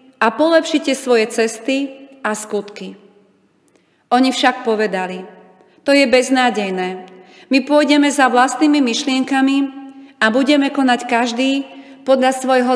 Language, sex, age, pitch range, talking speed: Slovak, female, 30-49, 205-275 Hz, 110 wpm